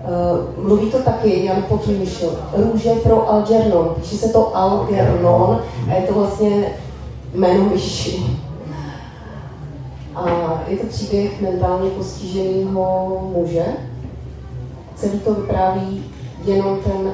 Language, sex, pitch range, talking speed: Slovak, female, 175-220 Hz, 105 wpm